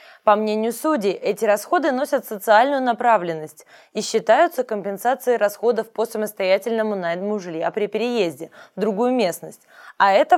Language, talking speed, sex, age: Russian, 135 wpm, female, 20-39